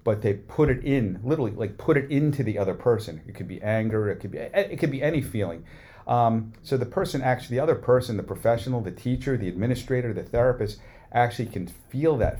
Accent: American